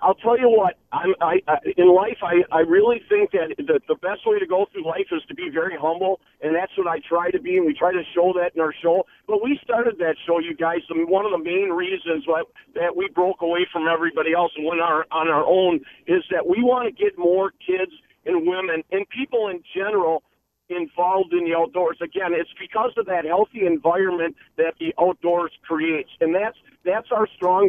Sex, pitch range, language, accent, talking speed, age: male, 165-240 Hz, English, American, 225 wpm, 50-69